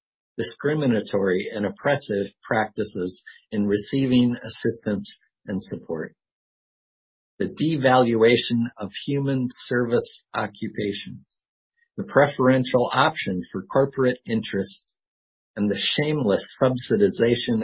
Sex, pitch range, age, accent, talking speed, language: male, 105-135 Hz, 50-69, American, 85 wpm, English